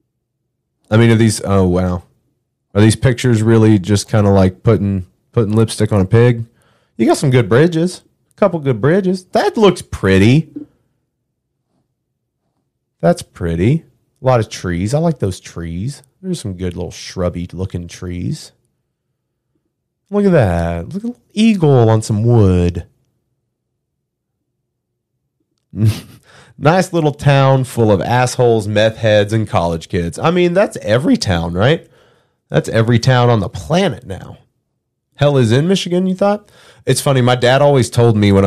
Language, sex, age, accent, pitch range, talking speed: English, male, 30-49, American, 100-135 Hz, 150 wpm